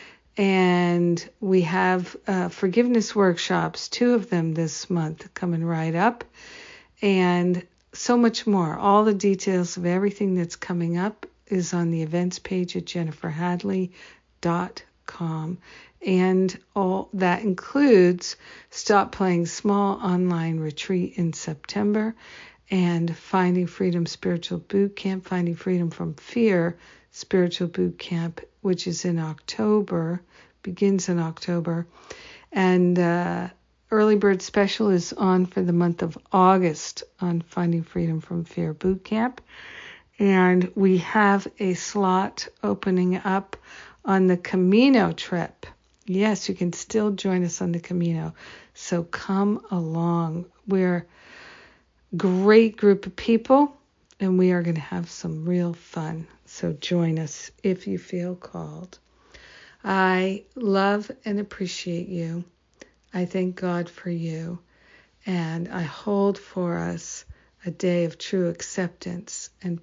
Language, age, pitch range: English, 50-69, 170-195 Hz